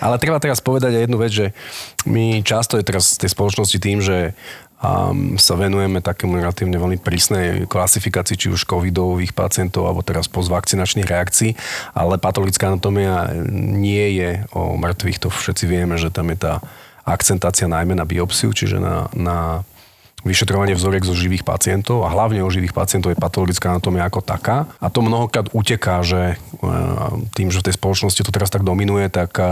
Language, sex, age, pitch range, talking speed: Slovak, male, 30-49, 90-100 Hz, 170 wpm